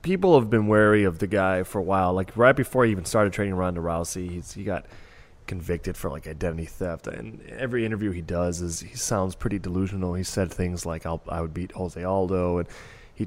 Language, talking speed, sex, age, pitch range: English, 220 wpm, male, 20-39, 90-110 Hz